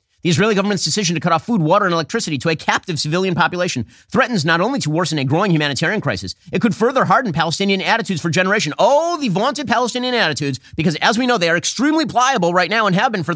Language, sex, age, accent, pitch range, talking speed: English, male, 30-49, American, 135-200 Hz, 235 wpm